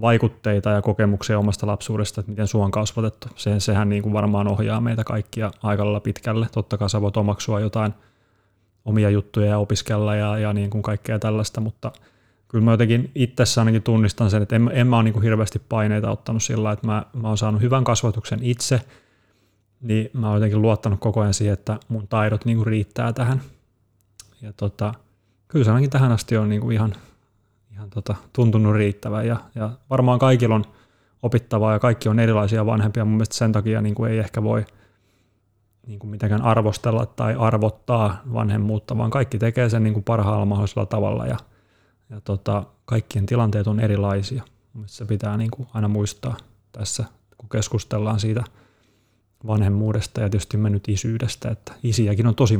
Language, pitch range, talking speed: Finnish, 105-115 Hz, 175 wpm